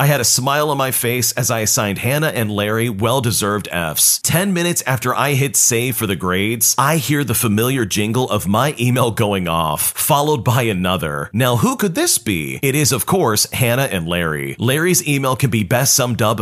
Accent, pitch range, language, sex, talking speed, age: American, 110-150 Hz, English, male, 205 wpm, 40-59